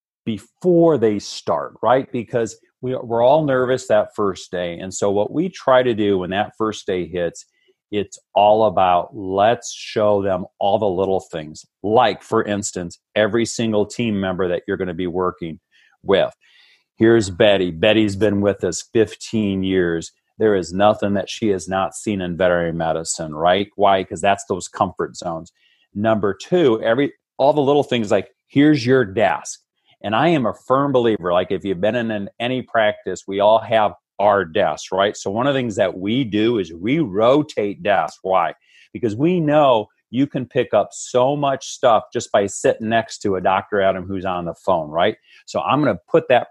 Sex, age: male, 40-59